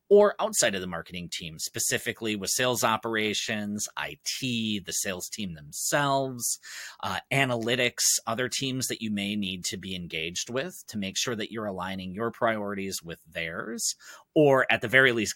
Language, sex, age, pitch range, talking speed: English, male, 30-49, 100-140 Hz, 165 wpm